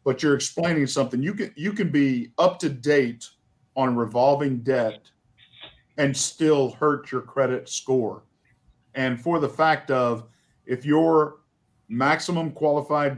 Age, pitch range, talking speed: 50-69, 125-150 Hz, 135 wpm